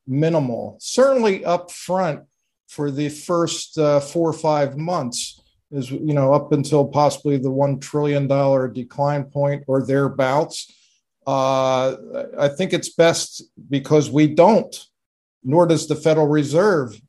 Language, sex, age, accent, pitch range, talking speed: English, male, 50-69, American, 135-165 Hz, 135 wpm